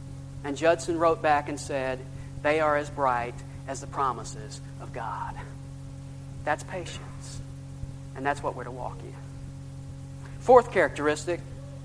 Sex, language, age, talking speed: male, English, 40-59, 130 wpm